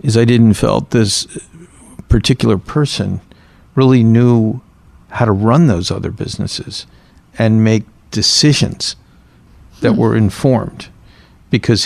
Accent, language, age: American, English, 60-79